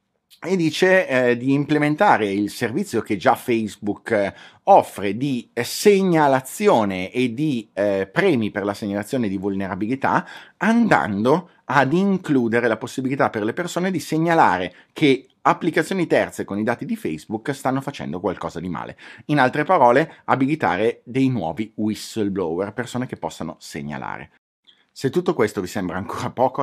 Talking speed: 145 wpm